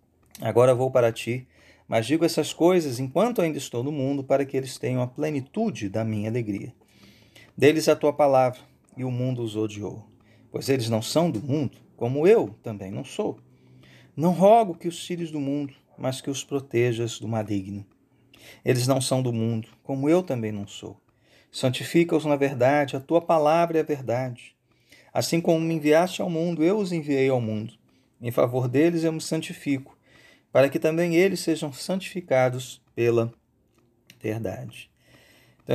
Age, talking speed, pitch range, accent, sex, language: 40-59, 170 wpm, 120-160 Hz, Brazilian, male, Portuguese